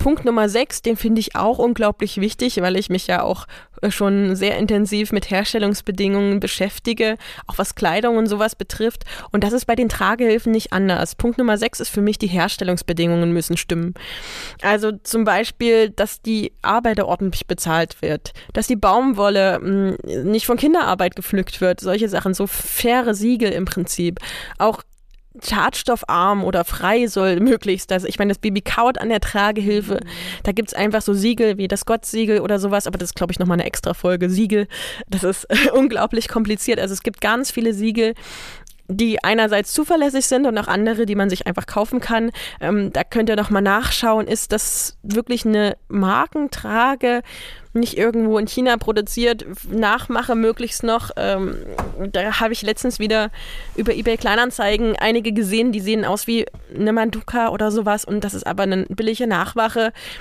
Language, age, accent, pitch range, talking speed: German, 20-39, German, 195-230 Hz, 170 wpm